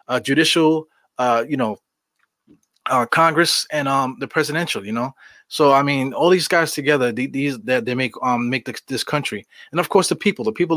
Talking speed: 200 wpm